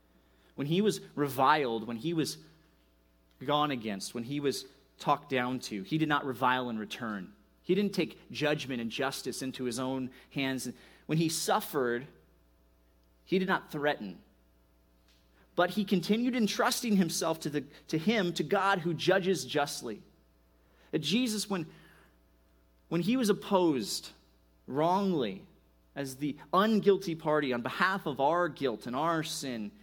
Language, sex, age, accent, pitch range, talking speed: English, male, 30-49, American, 100-165 Hz, 145 wpm